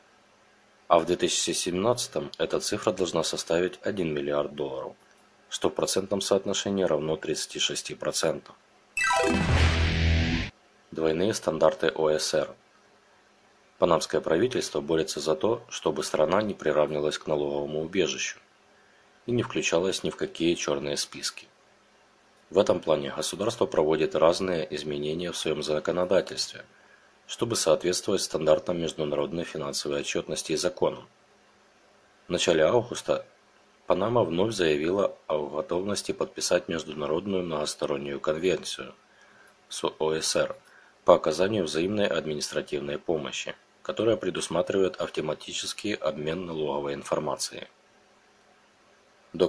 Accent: native